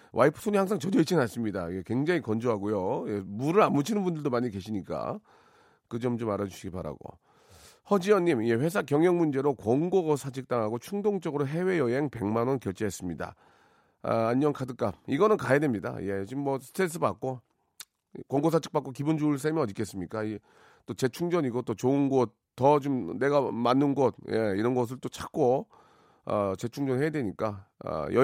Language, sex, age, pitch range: Korean, male, 40-59, 110-150 Hz